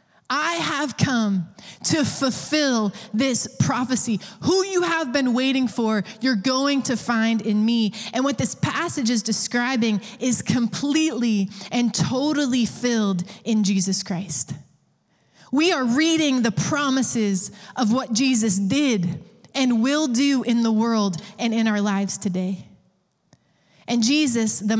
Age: 20-39